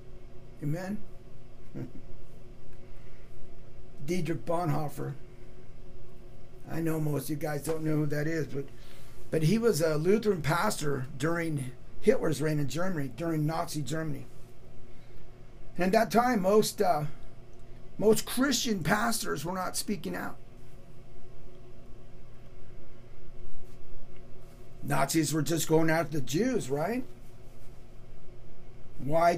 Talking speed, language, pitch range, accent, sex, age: 105 wpm, English, 120-160 Hz, American, male, 50-69